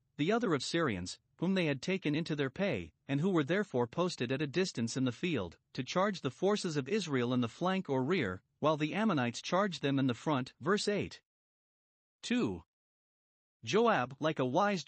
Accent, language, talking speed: American, English, 195 wpm